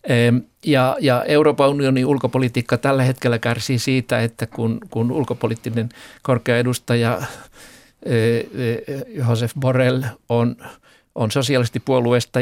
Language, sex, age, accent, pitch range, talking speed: Finnish, male, 50-69, native, 115-130 Hz, 95 wpm